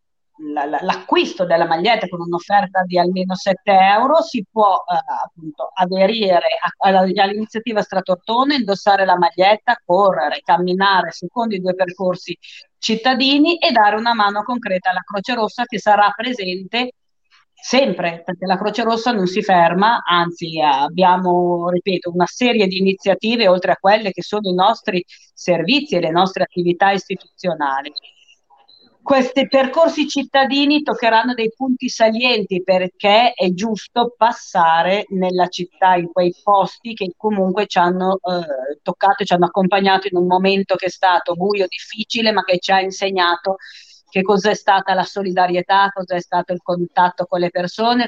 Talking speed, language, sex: 150 wpm, Italian, female